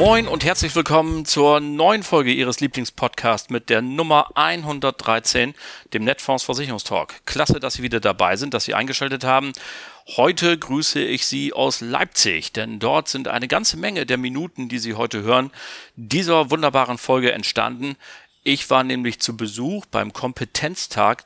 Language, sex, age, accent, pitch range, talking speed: German, male, 40-59, German, 115-145 Hz, 150 wpm